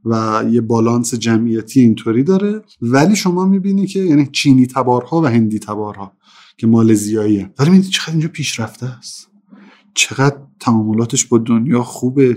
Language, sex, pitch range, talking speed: Persian, male, 120-170 Hz, 140 wpm